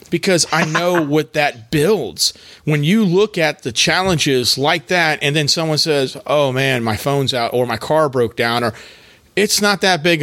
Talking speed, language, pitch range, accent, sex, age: 195 wpm, English, 125-155 Hz, American, male, 40-59